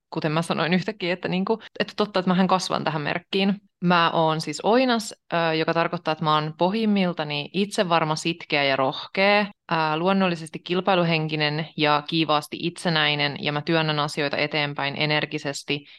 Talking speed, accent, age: 155 wpm, native, 20-39